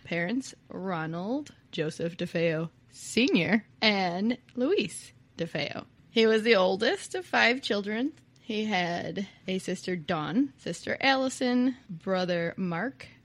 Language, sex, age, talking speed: English, female, 20-39, 110 wpm